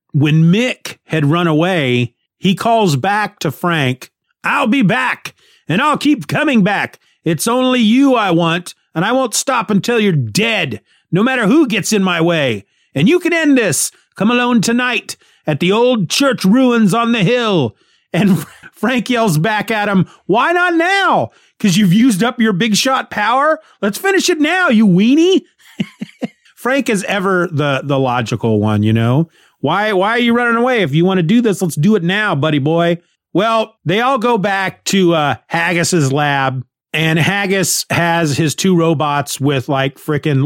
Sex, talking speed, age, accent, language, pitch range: male, 180 wpm, 30-49, American, English, 145-215 Hz